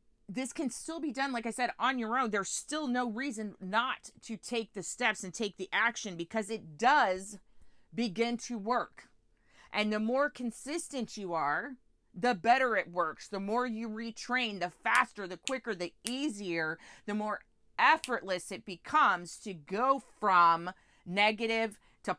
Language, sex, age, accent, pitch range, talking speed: English, female, 40-59, American, 190-240 Hz, 160 wpm